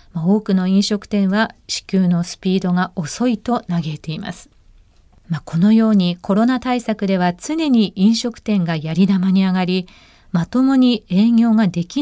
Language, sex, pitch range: Japanese, female, 180-245 Hz